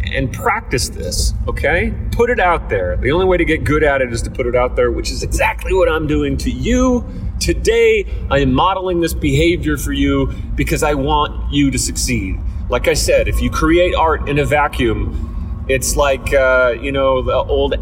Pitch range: 105-145 Hz